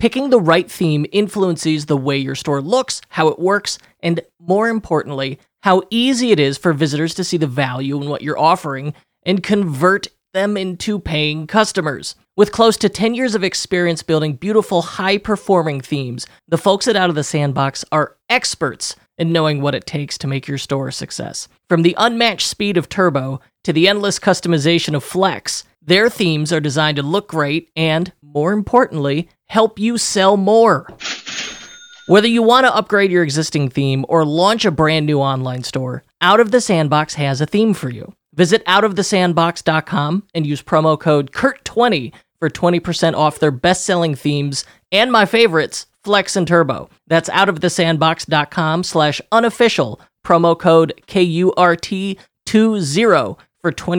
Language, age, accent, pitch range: English, 30-49, American, 150-200 Hz